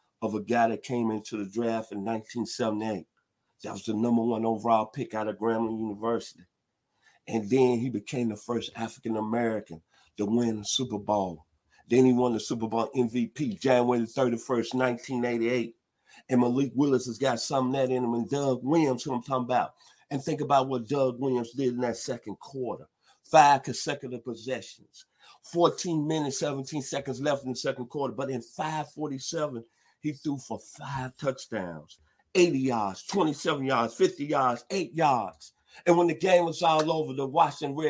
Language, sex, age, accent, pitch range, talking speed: English, male, 50-69, American, 115-145 Hz, 175 wpm